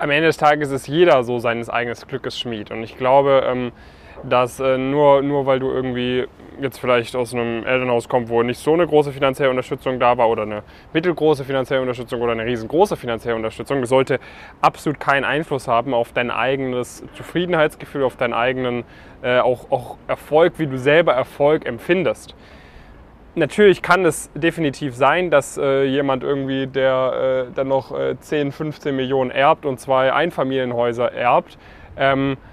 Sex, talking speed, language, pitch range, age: male, 165 wpm, German, 125-145 Hz, 10-29